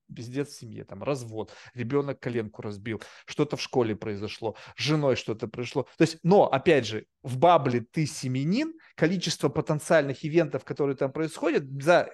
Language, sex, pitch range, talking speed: Russian, male, 135-175 Hz, 155 wpm